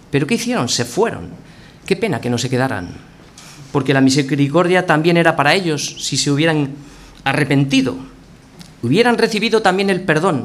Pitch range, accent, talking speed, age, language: 135-175 Hz, Spanish, 155 wpm, 40-59, Spanish